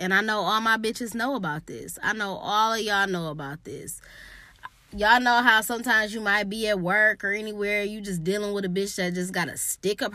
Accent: American